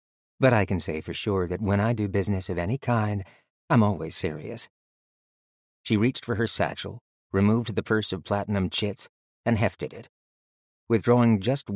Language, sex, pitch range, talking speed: English, male, 85-110 Hz, 170 wpm